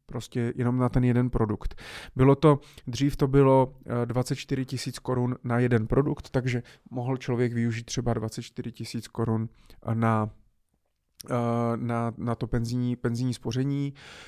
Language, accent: Czech, native